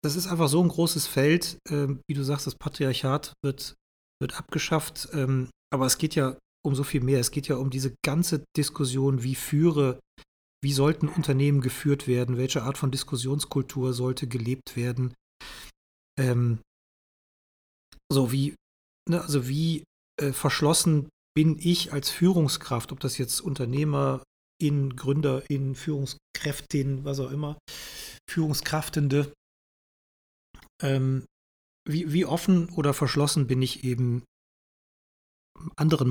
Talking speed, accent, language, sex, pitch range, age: 130 wpm, German, German, male, 130-155 Hz, 40-59